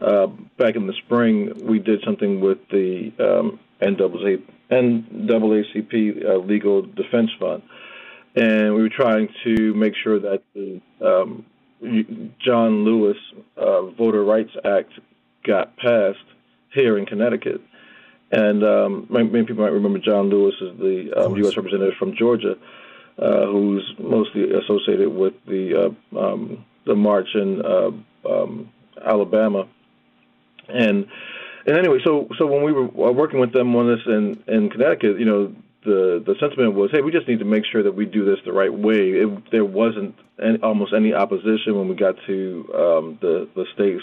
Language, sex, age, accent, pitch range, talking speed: English, male, 50-69, American, 100-110 Hz, 160 wpm